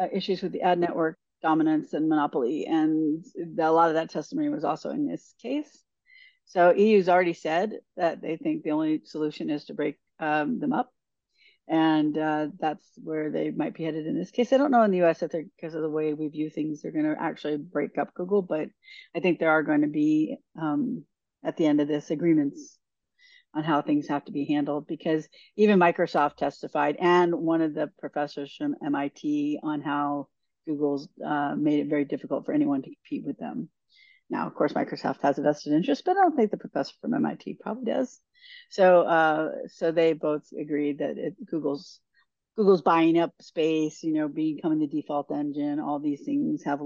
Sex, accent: female, American